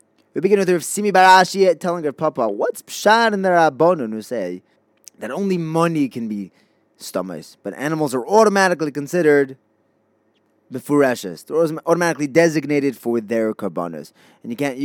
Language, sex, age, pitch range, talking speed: English, male, 20-39, 120-170 Hz, 155 wpm